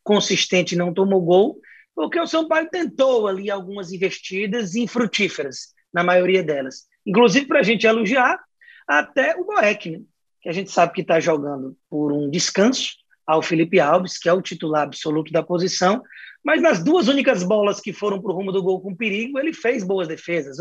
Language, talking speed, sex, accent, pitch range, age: Portuguese, 185 wpm, male, Brazilian, 180-255 Hz, 20-39